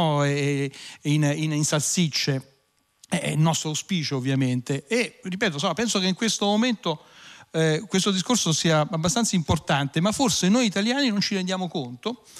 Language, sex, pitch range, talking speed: Italian, male, 145-190 Hz, 155 wpm